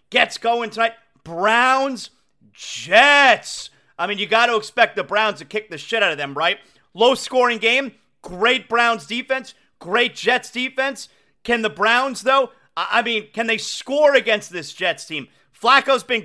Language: English